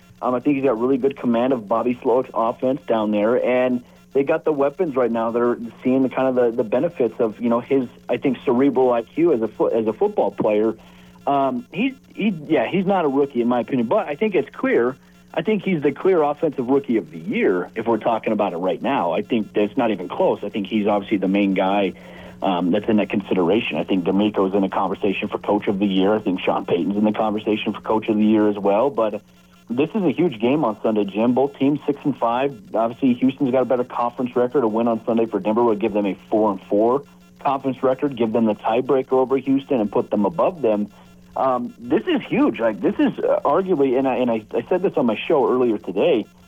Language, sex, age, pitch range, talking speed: English, male, 40-59, 105-135 Hz, 245 wpm